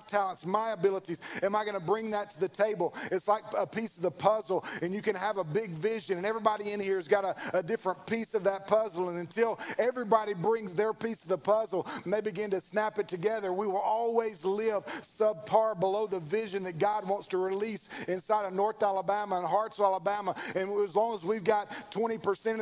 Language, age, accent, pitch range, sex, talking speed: English, 40-59, American, 190-225 Hz, male, 220 wpm